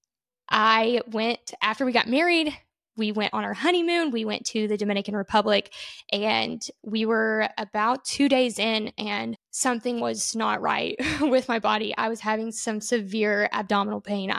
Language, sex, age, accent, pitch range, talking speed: English, female, 10-29, American, 205-240 Hz, 165 wpm